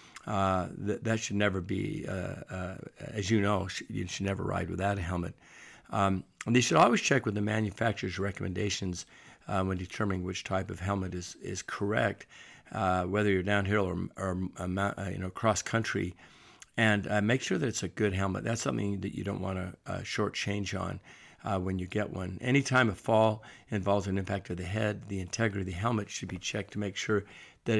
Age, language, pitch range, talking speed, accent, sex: 50-69, English, 95-110 Hz, 200 wpm, American, male